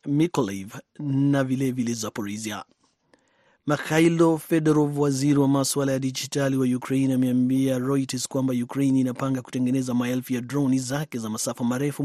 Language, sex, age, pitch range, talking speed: Swahili, male, 30-49, 125-145 Hz, 135 wpm